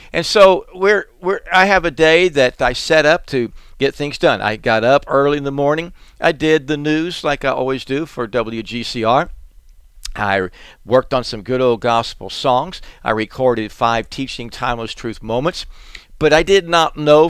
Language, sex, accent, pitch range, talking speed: English, male, American, 115-150 Hz, 185 wpm